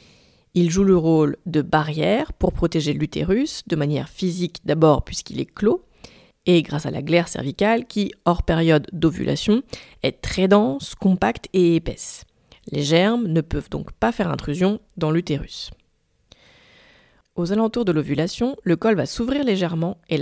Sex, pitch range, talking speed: female, 165-215 Hz, 155 wpm